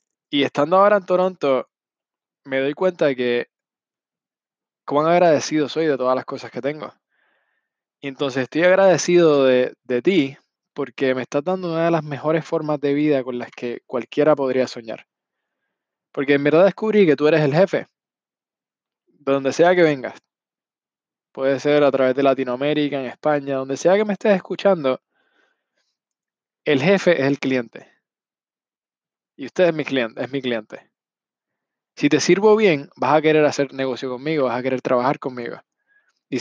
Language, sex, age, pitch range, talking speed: Spanish, male, 20-39, 130-160 Hz, 165 wpm